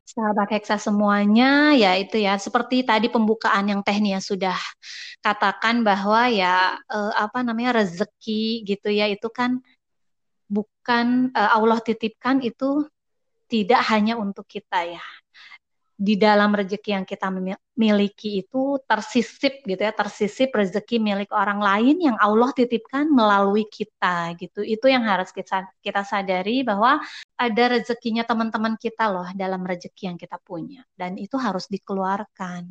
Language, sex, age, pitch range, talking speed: Indonesian, female, 20-39, 200-260 Hz, 135 wpm